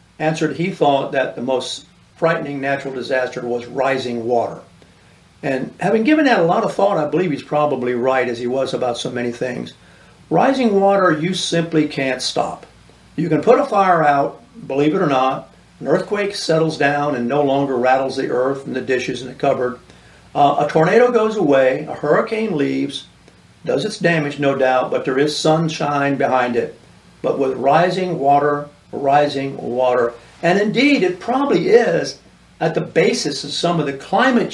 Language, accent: English, American